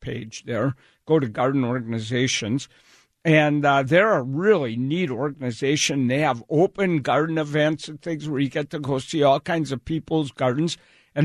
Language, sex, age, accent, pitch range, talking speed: English, male, 60-79, American, 130-180 Hz, 170 wpm